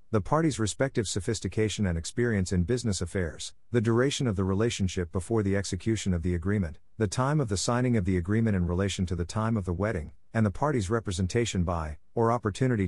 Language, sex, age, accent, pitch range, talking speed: English, male, 50-69, American, 90-115 Hz, 200 wpm